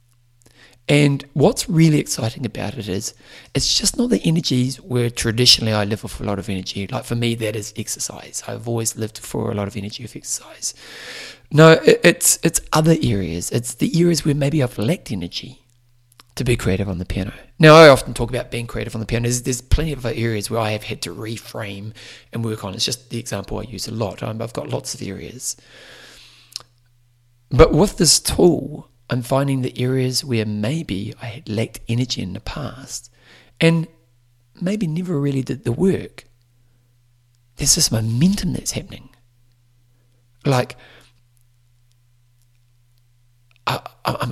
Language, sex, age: English, male, 30-49